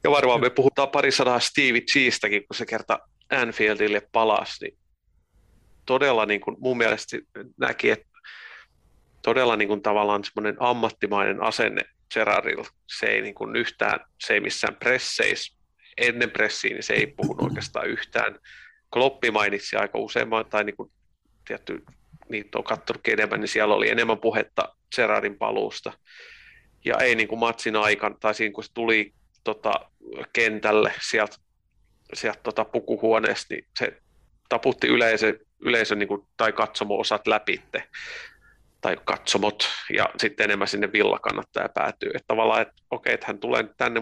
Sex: male